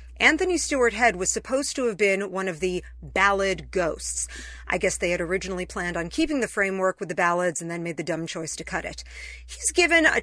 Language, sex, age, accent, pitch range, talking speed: English, female, 40-59, American, 180-260 Hz, 225 wpm